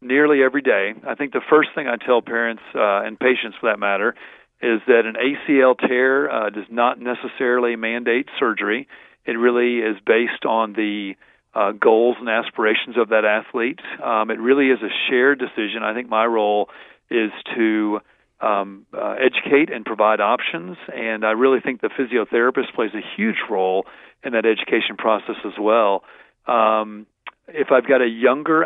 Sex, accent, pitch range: male, American, 110-135 Hz